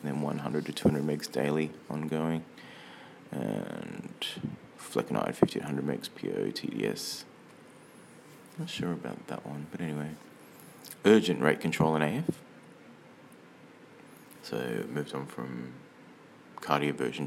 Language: English